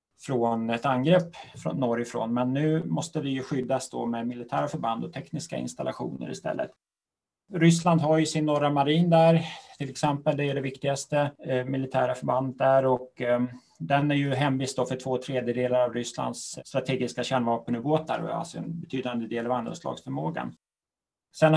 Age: 30-49